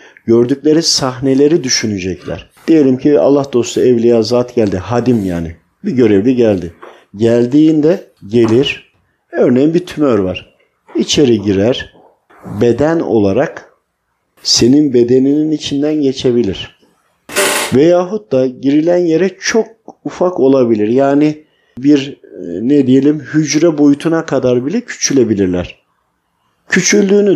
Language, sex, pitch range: Turkish, male, 120-140 Hz